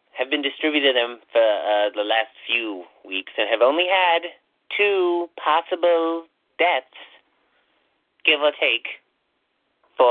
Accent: American